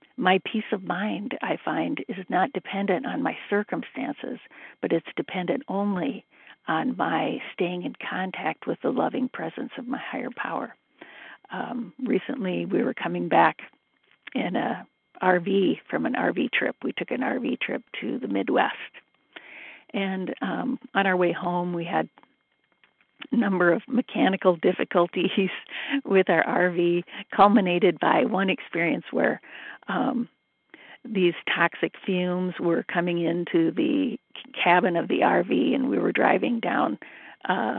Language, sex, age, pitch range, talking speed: English, female, 50-69, 180-250 Hz, 140 wpm